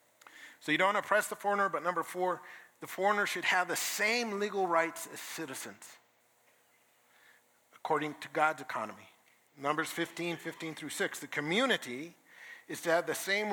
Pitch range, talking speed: 150-190 Hz, 155 wpm